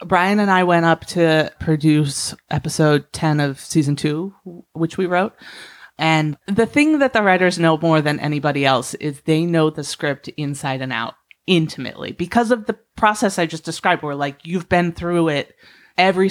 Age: 30-49